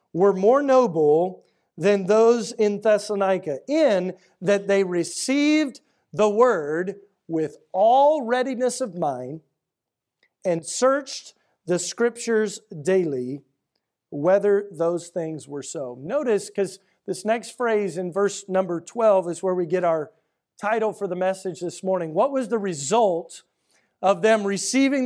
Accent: American